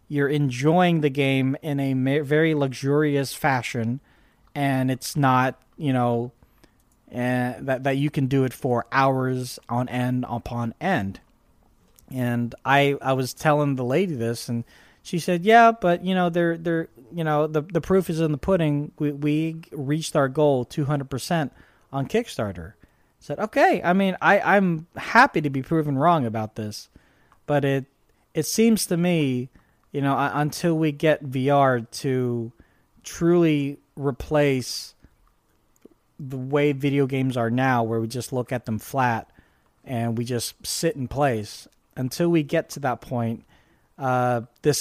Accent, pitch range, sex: American, 125-155 Hz, male